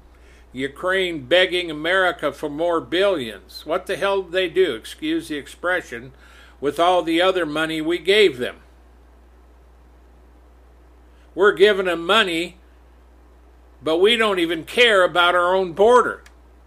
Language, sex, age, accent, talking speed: English, male, 60-79, American, 130 wpm